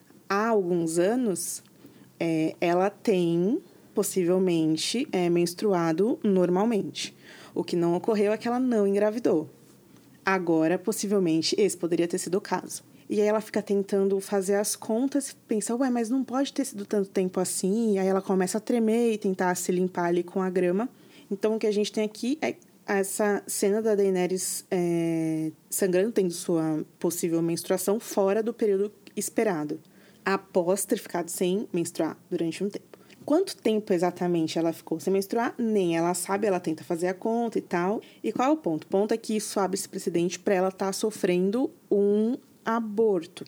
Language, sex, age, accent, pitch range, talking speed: Portuguese, female, 20-39, Brazilian, 175-215 Hz, 175 wpm